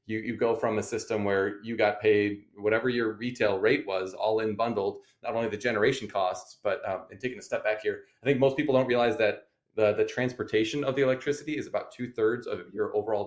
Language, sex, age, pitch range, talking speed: English, male, 20-39, 105-135 Hz, 230 wpm